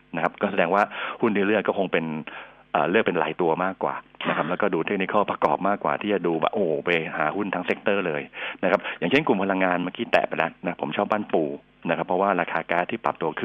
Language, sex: Thai, male